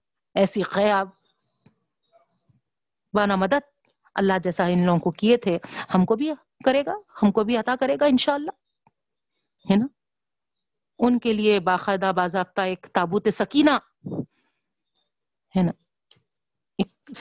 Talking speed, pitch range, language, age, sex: 125 wpm, 185-245 Hz, Urdu, 40-59, female